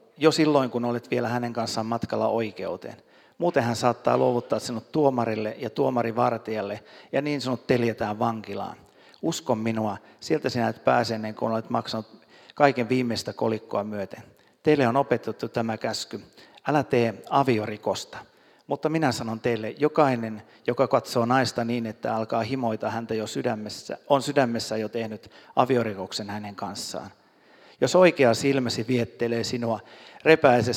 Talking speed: 140 wpm